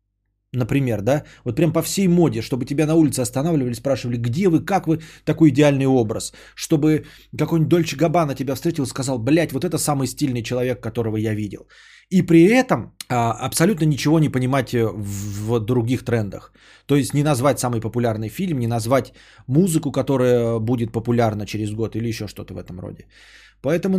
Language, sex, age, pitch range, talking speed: Bulgarian, male, 20-39, 115-155 Hz, 175 wpm